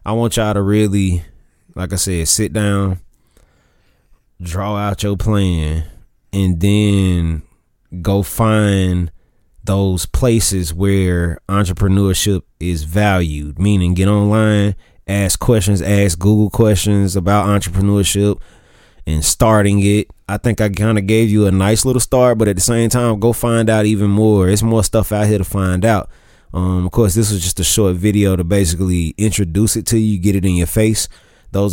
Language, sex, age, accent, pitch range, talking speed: English, male, 20-39, American, 95-110 Hz, 165 wpm